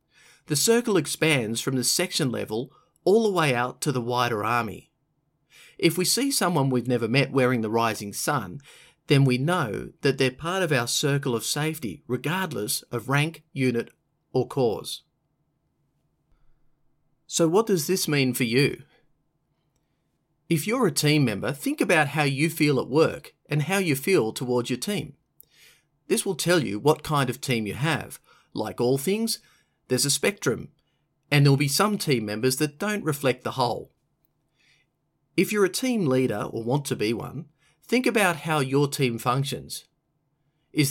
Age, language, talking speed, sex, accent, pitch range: 30-49, English, 165 wpm, male, Australian, 130-165 Hz